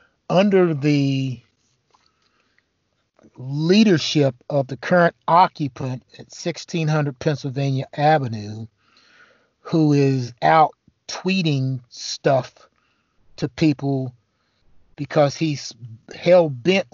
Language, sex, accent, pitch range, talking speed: English, male, American, 125-155 Hz, 80 wpm